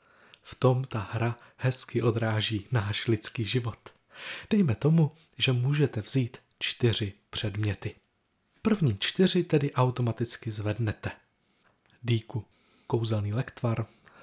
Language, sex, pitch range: Czech, male, 110-155 Hz